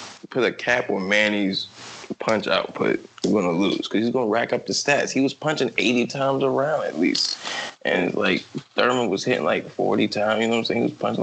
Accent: American